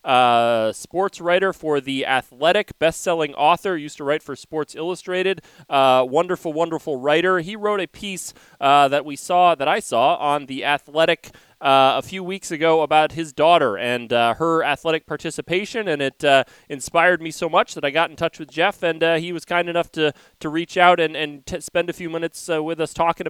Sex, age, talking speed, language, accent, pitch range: male, 30-49, 205 wpm, English, American, 140-170 Hz